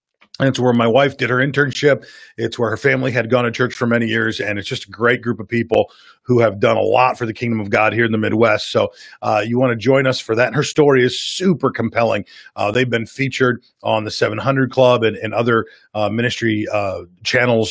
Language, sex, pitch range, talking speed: English, male, 115-145 Hz, 235 wpm